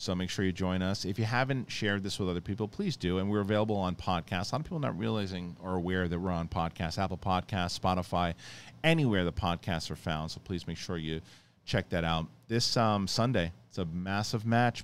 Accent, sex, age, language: American, male, 40-59, English